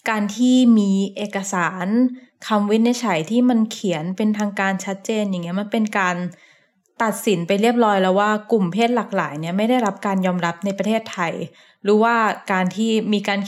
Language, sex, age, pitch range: Thai, female, 20-39, 190-230 Hz